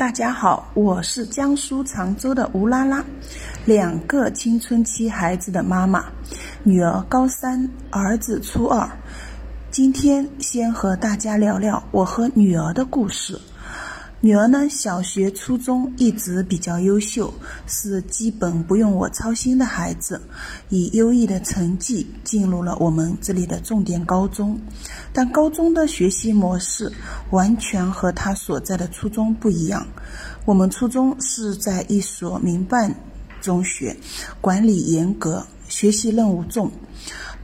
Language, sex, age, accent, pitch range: Chinese, female, 30-49, native, 185-235 Hz